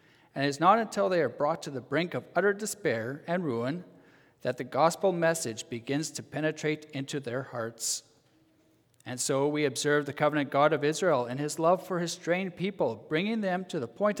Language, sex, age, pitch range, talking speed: English, male, 40-59, 125-170 Hz, 200 wpm